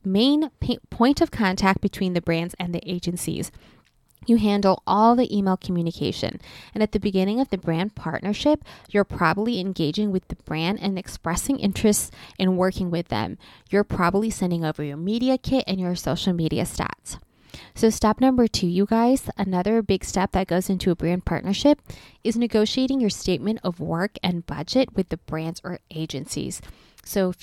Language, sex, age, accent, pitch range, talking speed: English, female, 20-39, American, 175-220 Hz, 175 wpm